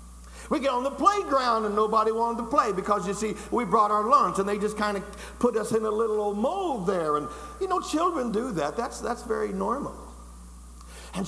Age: 60-79